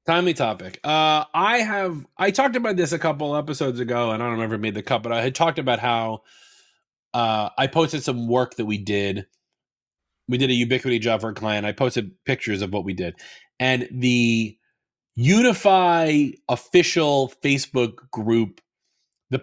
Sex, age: male, 30-49